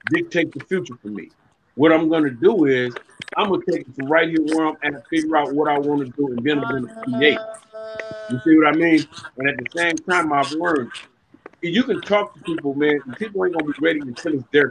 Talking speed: 245 wpm